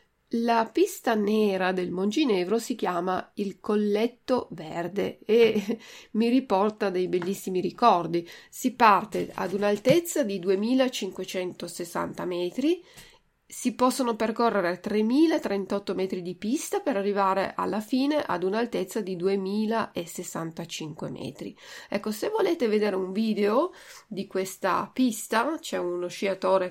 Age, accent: 40-59, native